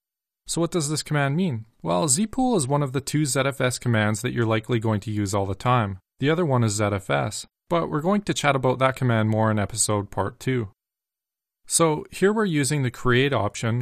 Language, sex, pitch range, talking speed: English, male, 110-145 Hz, 215 wpm